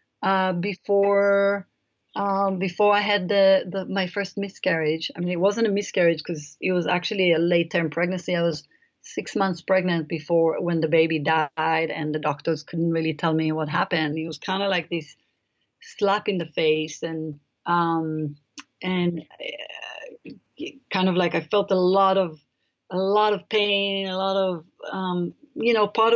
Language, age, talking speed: English, 30-49, 165 wpm